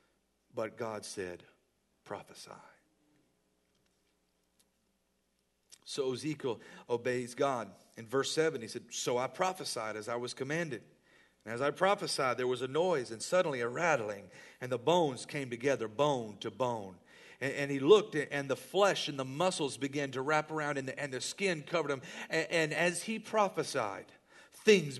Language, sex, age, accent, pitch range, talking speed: English, male, 50-69, American, 150-215 Hz, 160 wpm